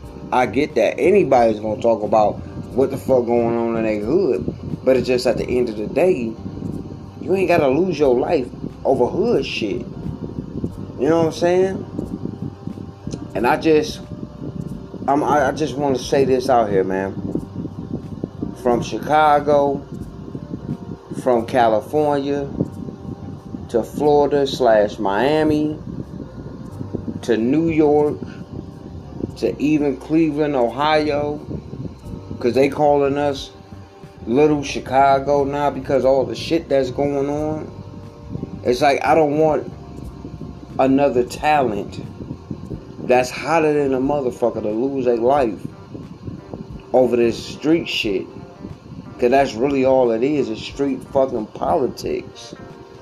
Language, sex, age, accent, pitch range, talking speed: English, male, 30-49, American, 120-150 Hz, 125 wpm